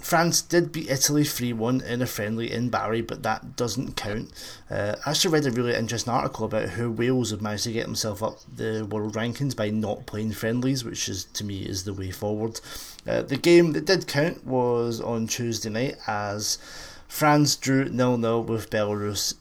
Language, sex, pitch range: English, male, 110-140 Hz